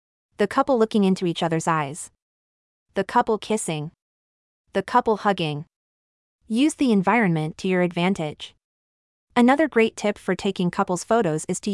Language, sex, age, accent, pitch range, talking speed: English, female, 30-49, American, 155-220 Hz, 145 wpm